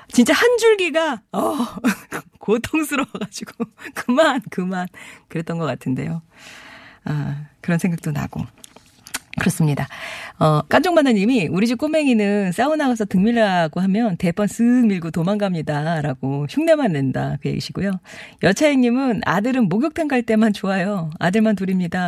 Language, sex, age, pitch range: Korean, female, 40-59, 160-240 Hz